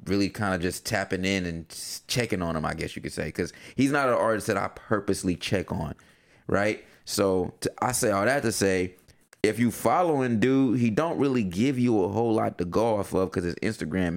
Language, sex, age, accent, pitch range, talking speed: English, male, 30-49, American, 90-115 Hz, 225 wpm